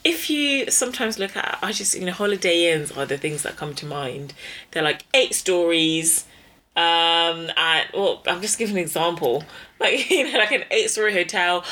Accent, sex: British, female